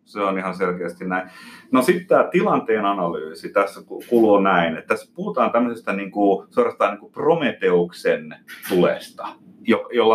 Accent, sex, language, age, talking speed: native, male, Finnish, 30-49, 140 wpm